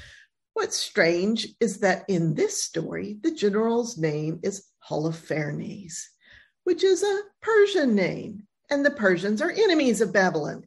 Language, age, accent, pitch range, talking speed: English, 50-69, American, 180-280 Hz, 135 wpm